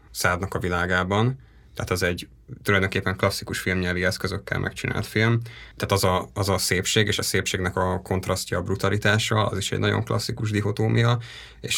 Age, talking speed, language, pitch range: 20-39, 165 wpm, Hungarian, 90-110 Hz